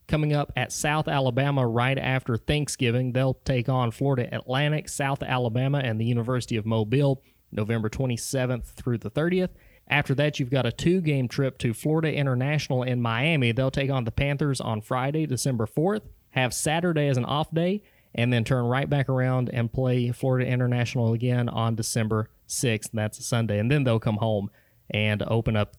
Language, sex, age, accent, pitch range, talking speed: English, male, 30-49, American, 115-140 Hz, 180 wpm